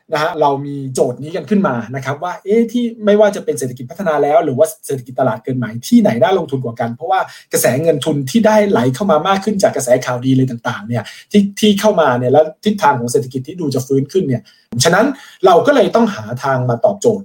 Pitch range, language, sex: 130-200 Hz, Thai, male